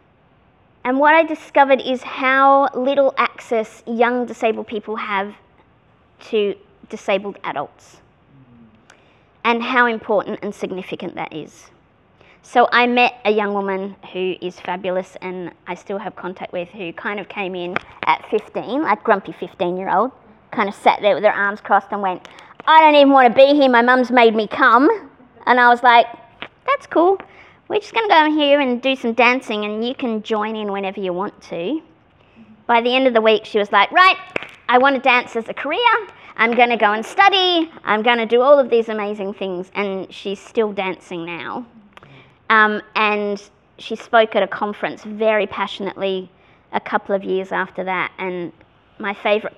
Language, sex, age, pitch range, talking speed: English, female, 20-39, 195-255 Hz, 185 wpm